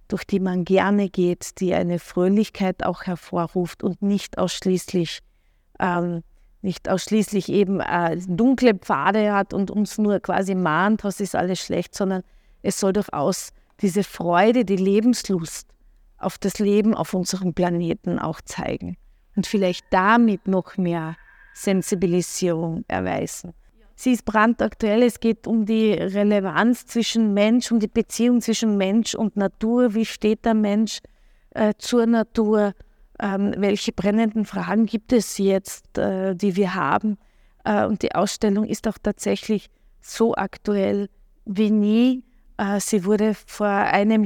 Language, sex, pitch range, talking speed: German, female, 185-215 Hz, 140 wpm